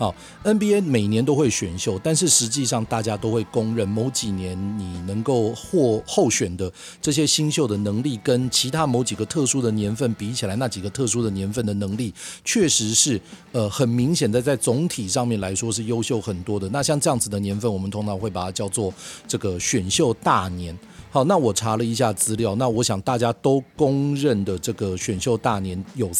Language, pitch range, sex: Chinese, 100-130 Hz, male